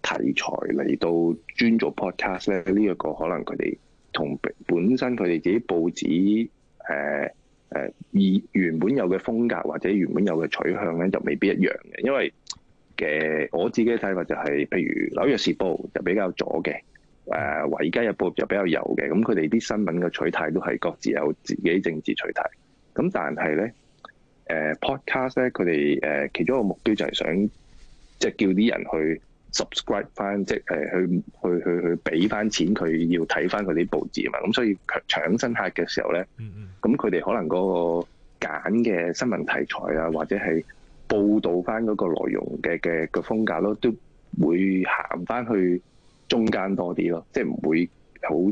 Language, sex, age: Chinese, male, 20-39